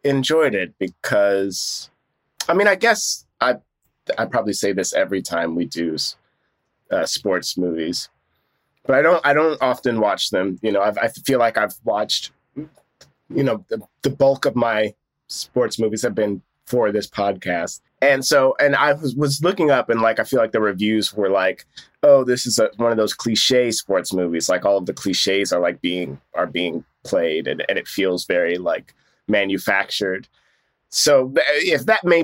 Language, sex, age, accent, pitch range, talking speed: English, male, 20-39, American, 100-145 Hz, 180 wpm